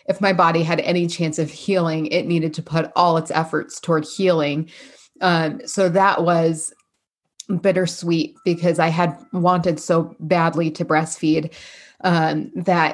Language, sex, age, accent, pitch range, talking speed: English, female, 20-39, American, 155-175 Hz, 150 wpm